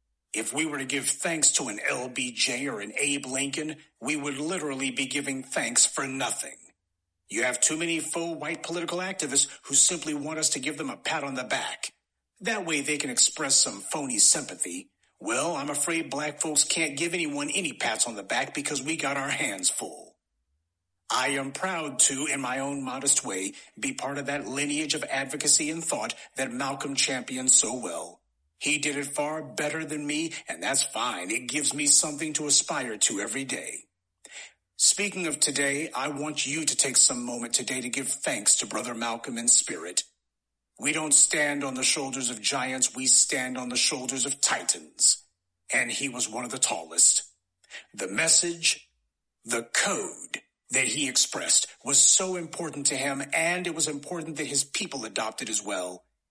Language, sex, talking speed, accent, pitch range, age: English, male, 185 wpm, American, 130-155 Hz, 40-59